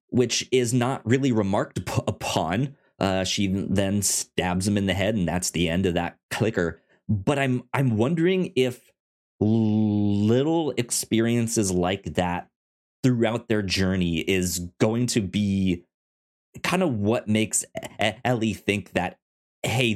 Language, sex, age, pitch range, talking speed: English, male, 30-49, 95-125 Hz, 140 wpm